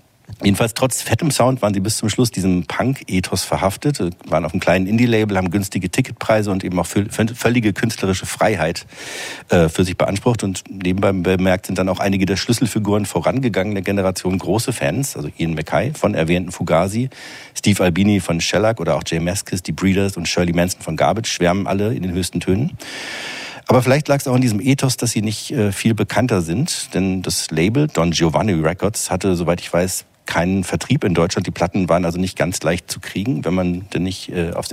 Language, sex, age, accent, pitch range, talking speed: German, male, 50-69, German, 90-110 Hz, 195 wpm